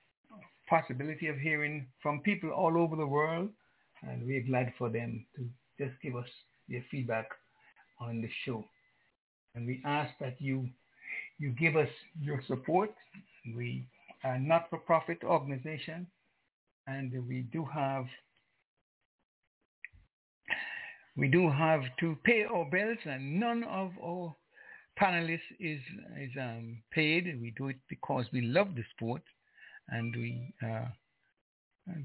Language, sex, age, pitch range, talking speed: English, male, 60-79, 125-175 Hz, 130 wpm